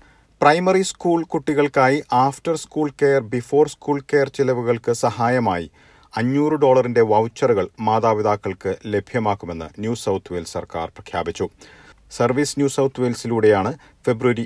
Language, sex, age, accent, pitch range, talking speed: Malayalam, male, 50-69, native, 105-140 Hz, 110 wpm